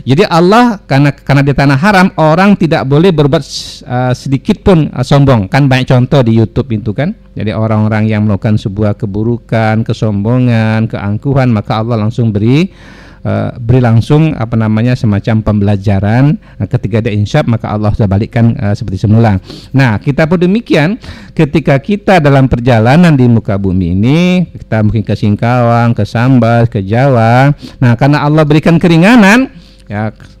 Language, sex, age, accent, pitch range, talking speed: Indonesian, male, 50-69, native, 110-150 Hz, 155 wpm